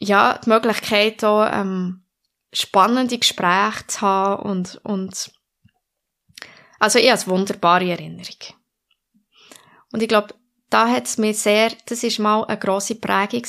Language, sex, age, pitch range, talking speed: German, female, 20-39, 195-235 Hz, 130 wpm